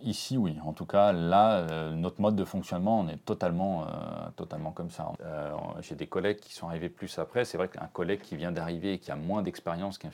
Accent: French